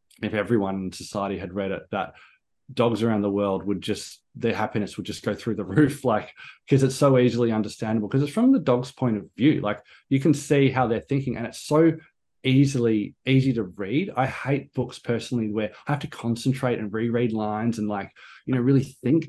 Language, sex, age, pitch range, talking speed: English, male, 20-39, 110-130 Hz, 210 wpm